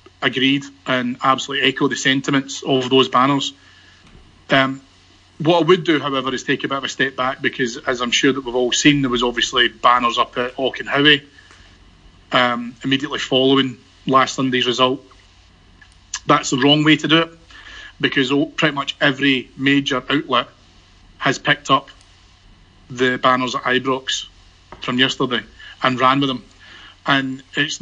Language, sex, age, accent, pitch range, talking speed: English, male, 30-49, British, 125-145 Hz, 155 wpm